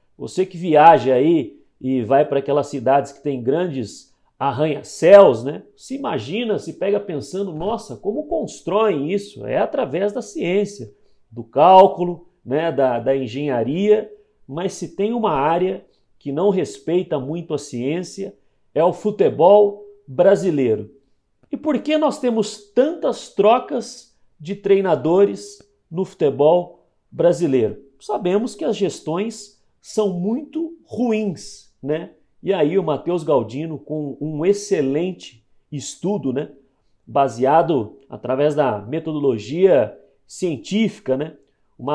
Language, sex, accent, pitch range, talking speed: Portuguese, male, Brazilian, 140-200 Hz, 120 wpm